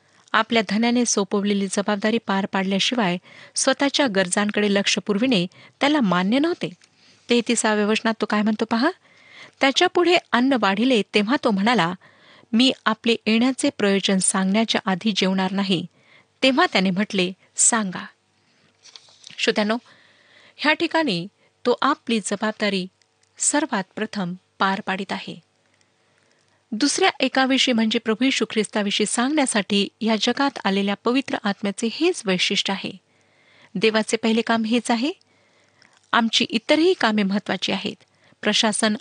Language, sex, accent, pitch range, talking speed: Marathi, female, native, 200-250 Hz, 110 wpm